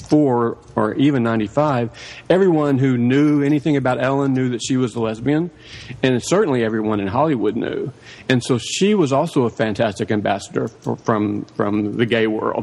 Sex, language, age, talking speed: male, English, 40-59, 160 wpm